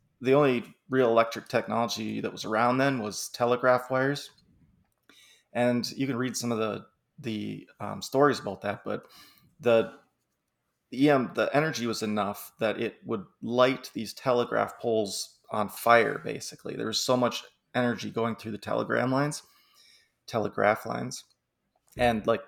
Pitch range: 110-125 Hz